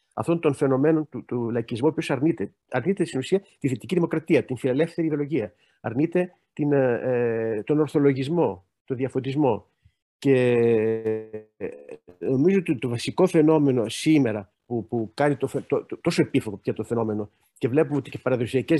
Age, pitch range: 50-69, 120-165 Hz